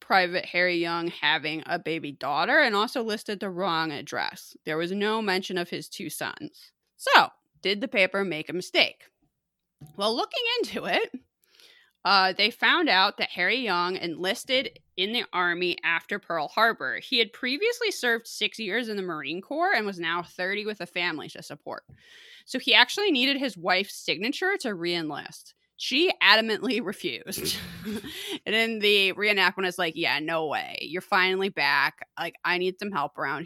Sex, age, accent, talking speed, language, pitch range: female, 20-39, American, 170 wpm, English, 175-255 Hz